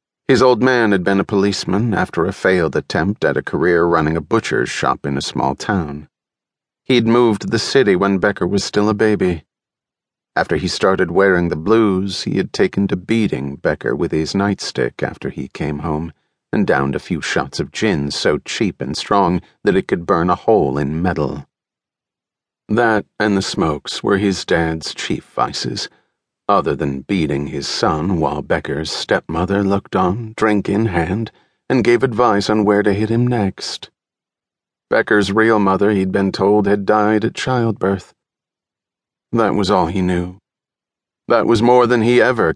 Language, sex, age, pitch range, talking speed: English, male, 40-59, 90-110 Hz, 175 wpm